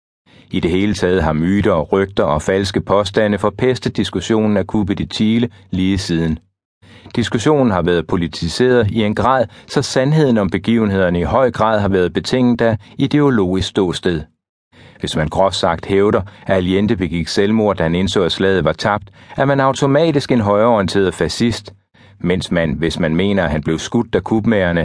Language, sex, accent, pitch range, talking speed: Danish, male, native, 95-115 Hz, 175 wpm